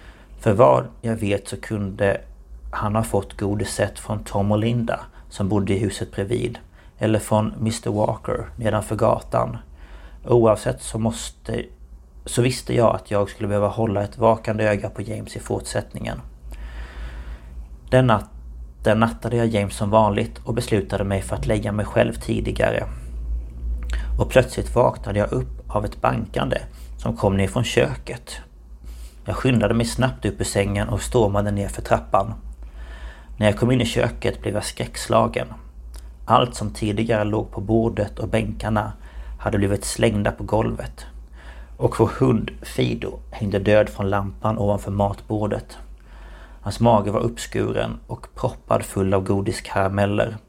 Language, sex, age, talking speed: Swedish, male, 30-49, 150 wpm